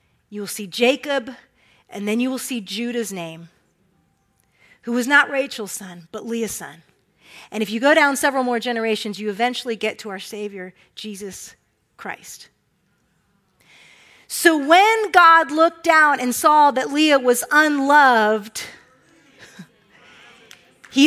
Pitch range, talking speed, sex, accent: 235-345 Hz, 135 wpm, female, American